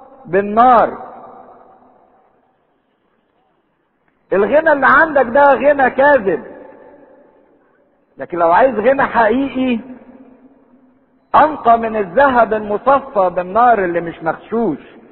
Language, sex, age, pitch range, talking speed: English, male, 50-69, 150-255 Hz, 80 wpm